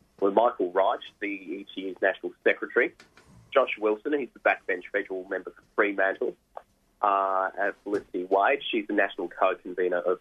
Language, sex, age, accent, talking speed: English, male, 30-49, Australian, 155 wpm